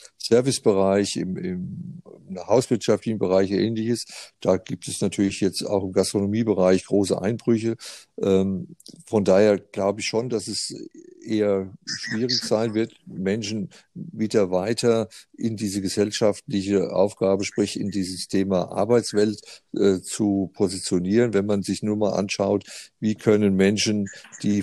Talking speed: 130 wpm